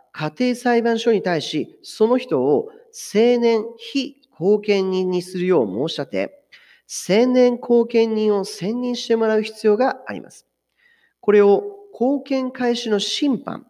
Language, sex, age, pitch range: Japanese, male, 40-59, 180-245 Hz